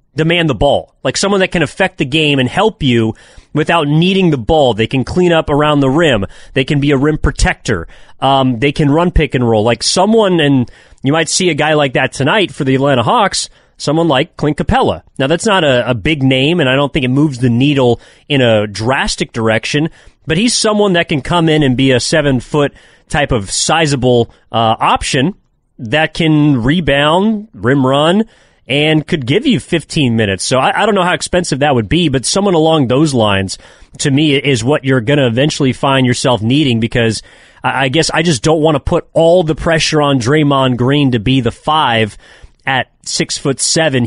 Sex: male